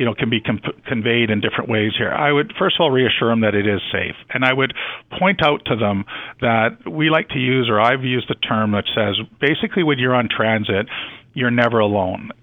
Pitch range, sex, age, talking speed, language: 110-145 Hz, male, 50-69, 220 wpm, English